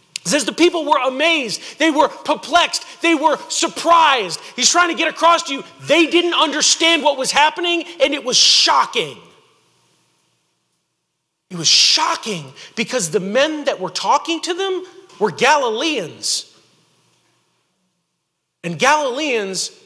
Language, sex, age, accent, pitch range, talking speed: English, male, 40-59, American, 270-345 Hz, 135 wpm